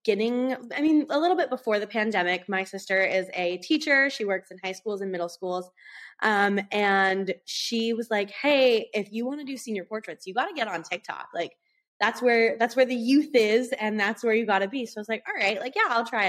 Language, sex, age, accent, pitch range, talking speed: English, female, 10-29, American, 195-245 Hz, 245 wpm